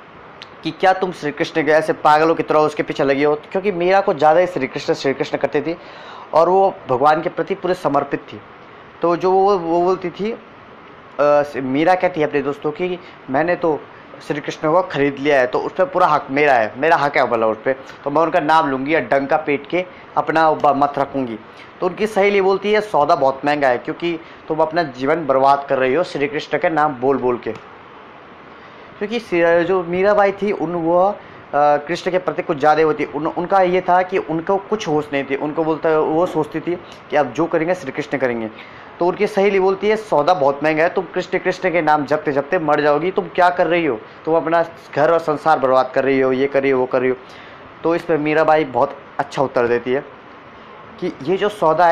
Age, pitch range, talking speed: 20-39, 145-180 Hz, 215 wpm